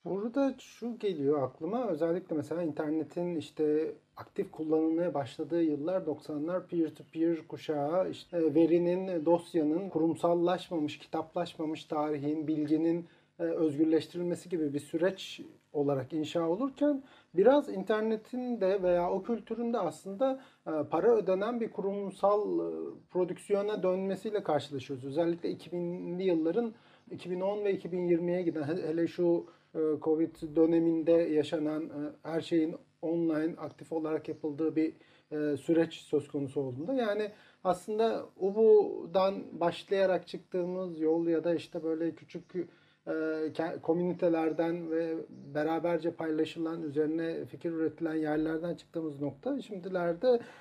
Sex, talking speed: male, 105 wpm